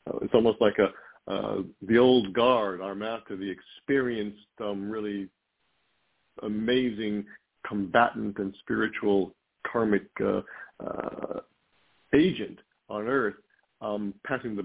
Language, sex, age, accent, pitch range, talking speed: English, male, 50-69, American, 100-120 Hz, 110 wpm